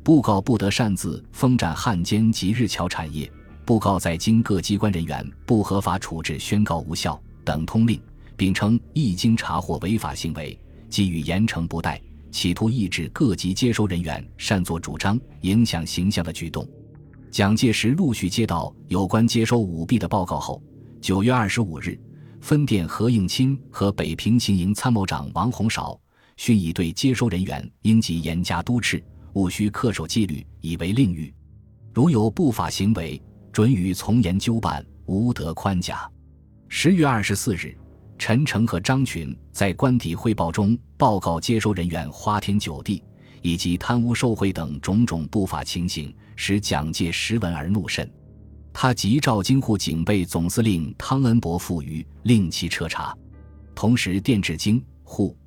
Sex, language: male, Chinese